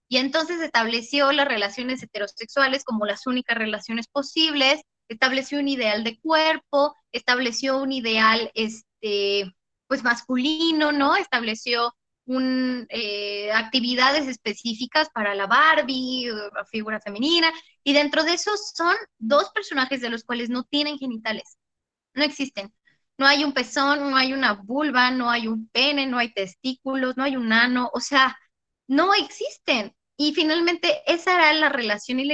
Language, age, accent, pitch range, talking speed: Spanish, 20-39, Mexican, 240-310 Hz, 150 wpm